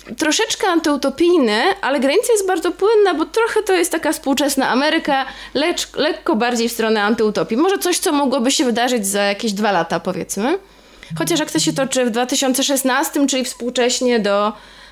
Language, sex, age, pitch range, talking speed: Polish, female, 20-39, 240-325 Hz, 160 wpm